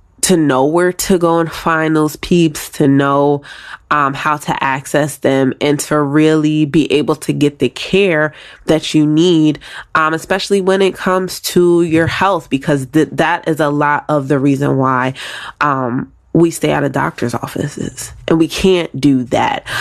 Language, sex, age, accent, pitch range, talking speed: English, female, 20-39, American, 140-165 Hz, 175 wpm